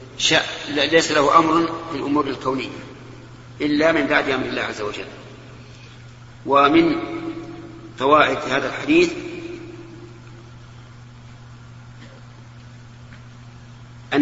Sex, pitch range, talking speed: male, 120-165 Hz, 75 wpm